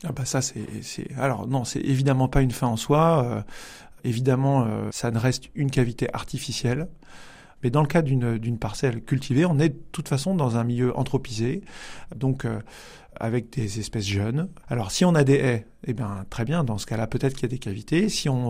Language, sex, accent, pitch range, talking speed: French, male, French, 115-140 Hz, 210 wpm